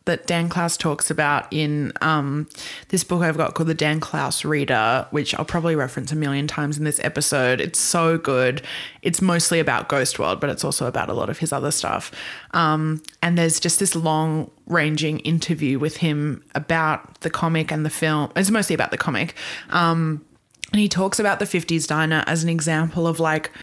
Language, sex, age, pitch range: English, female, 20-39, 155-175 Hz